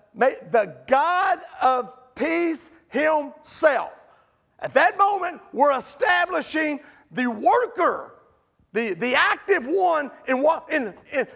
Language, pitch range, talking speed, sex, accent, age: English, 275-340 Hz, 90 wpm, male, American, 40-59